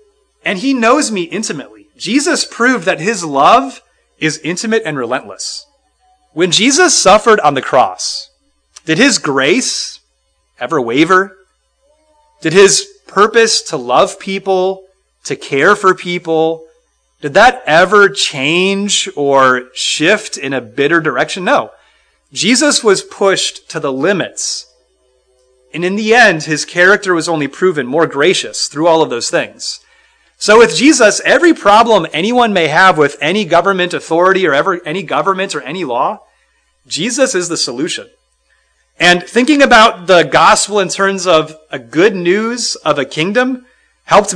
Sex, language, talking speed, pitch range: male, English, 140 wpm, 155-240 Hz